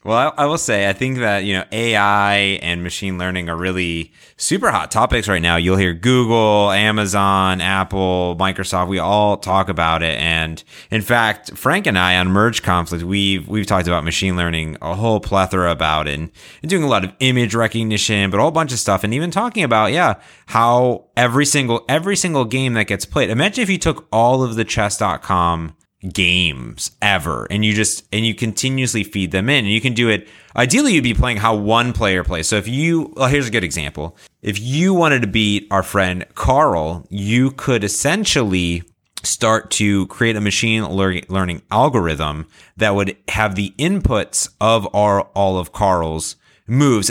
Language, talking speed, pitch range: English, 190 wpm, 95-120 Hz